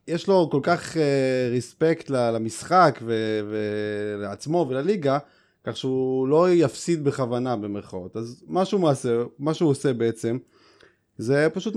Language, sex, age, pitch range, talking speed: Hebrew, male, 20-39, 125-165 Hz, 135 wpm